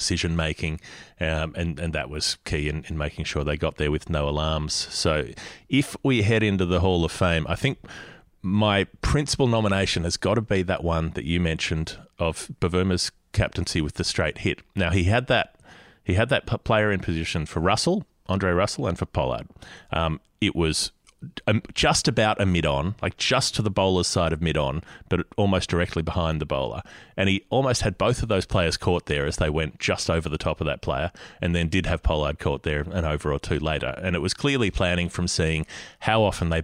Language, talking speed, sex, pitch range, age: English, 215 wpm, male, 80-100 Hz, 30-49